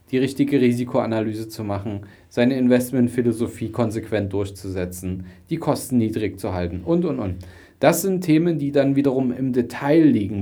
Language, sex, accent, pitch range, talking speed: German, male, German, 110-140 Hz, 150 wpm